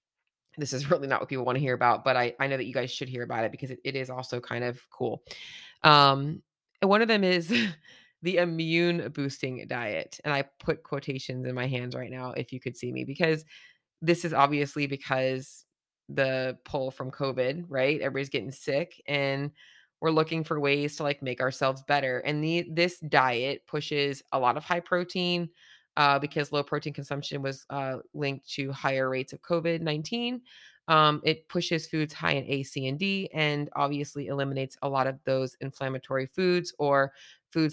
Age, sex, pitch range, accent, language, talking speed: 20-39, female, 135-155 Hz, American, English, 190 wpm